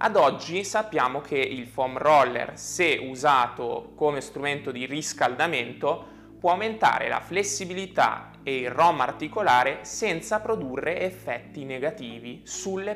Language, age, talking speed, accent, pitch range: Italian, 20-39, 120 wpm, native, 130-170 Hz